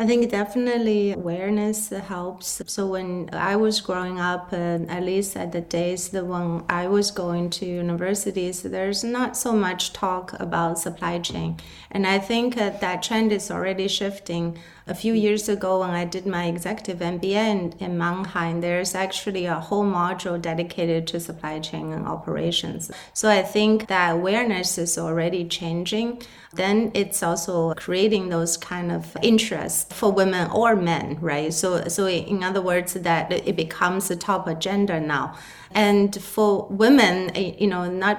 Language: English